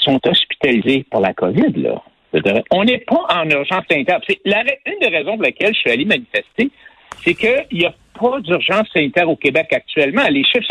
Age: 60-79